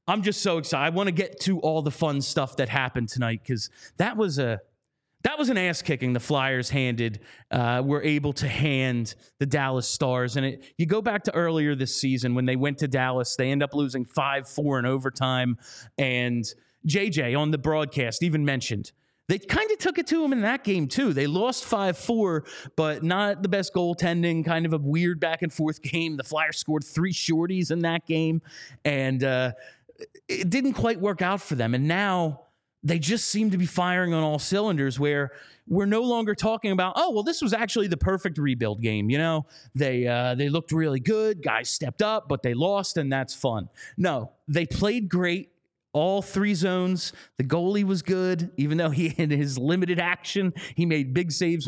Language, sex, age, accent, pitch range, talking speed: English, male, 30-49, American, 135-185 Hz, 200 wpm